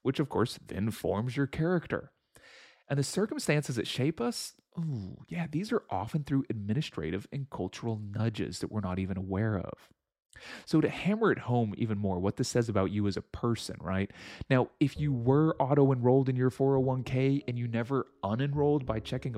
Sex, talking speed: male, 185 wpm